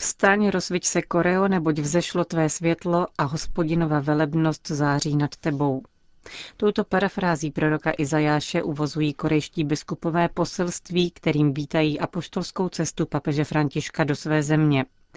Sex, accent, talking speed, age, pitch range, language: female, native, 125 wpm, 40-59, 150-175 Hz, Czech